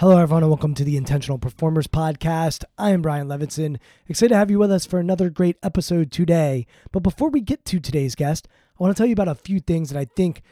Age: 20-39